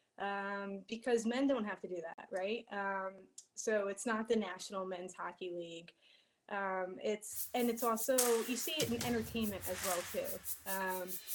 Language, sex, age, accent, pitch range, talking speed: English, female, 20-39, American, 190-230 Hz, 170 wpm